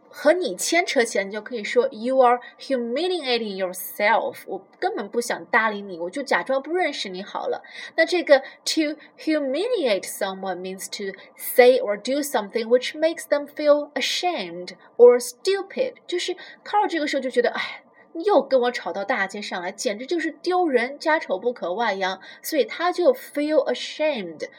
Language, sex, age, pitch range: Chinese, female, 20-39, 220-310 Hz